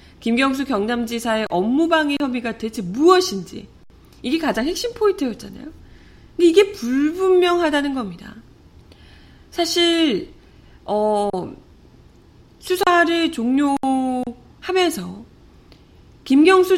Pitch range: 215-315 Hz